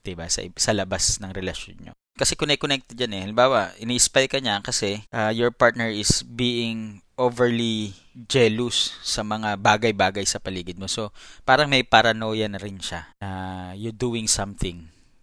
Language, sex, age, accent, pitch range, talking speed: English, male, 20-39, Filipino, 100-125 Hz, 145 wpm